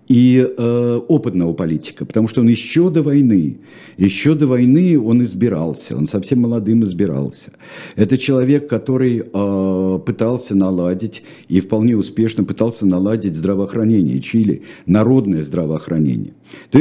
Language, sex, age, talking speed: Russian, male, 60-79, 125 wpm